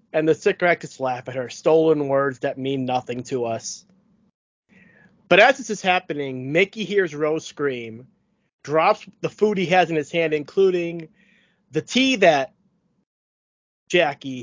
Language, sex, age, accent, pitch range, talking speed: English, male, 30-49, American, 145-195 Hz, 150 wpm